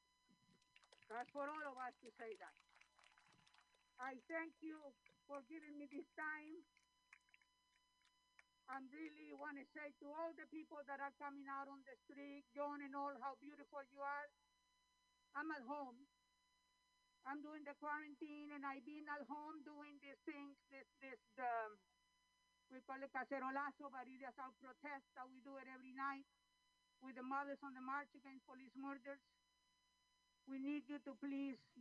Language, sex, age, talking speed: English, female, 50-69, 160 wpm